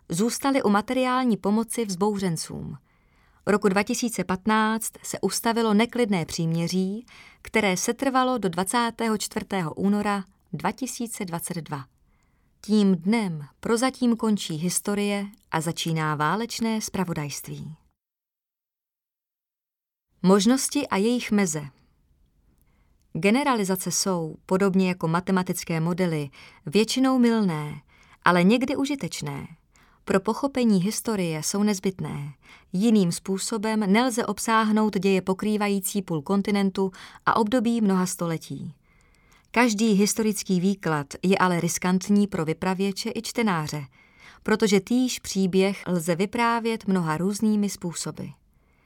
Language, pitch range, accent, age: Czech, 170-220 Hz, native, 30-49